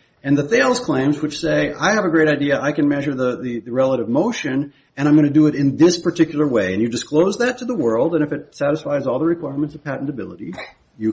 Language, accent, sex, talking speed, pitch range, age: English, American, male, 250 wpm, 115-155 Hz, 40-59